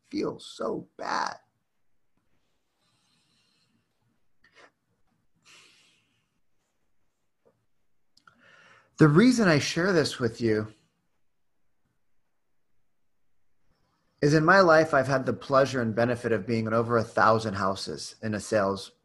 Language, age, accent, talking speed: English, 30-49, American, 95 wpm